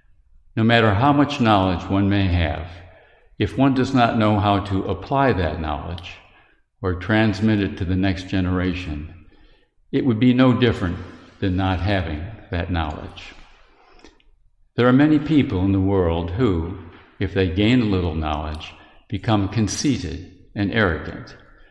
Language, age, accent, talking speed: English, 60-79, American, 145 wpm